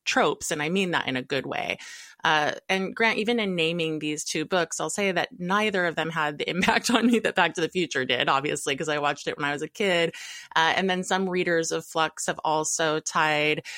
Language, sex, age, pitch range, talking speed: English, female, 20-39, 150-175 Hz, 240 wpm